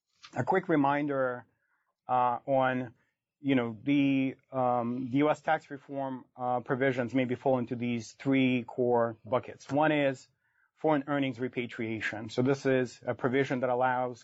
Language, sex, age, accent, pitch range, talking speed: English, male, 30-49, American, 120-135 Hz, 145 wpm